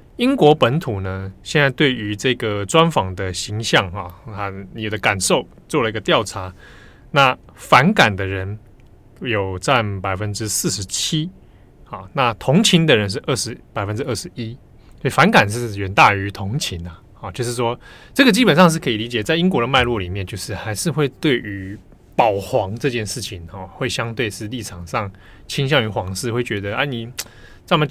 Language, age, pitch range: Chinese, 20-39, 100-140 Hz